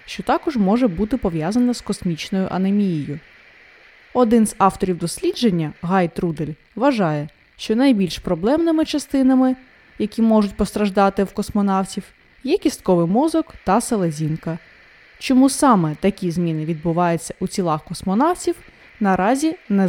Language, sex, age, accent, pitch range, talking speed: Ukrainian, female, 20-39, native, 185-260 Hz, 120 wpm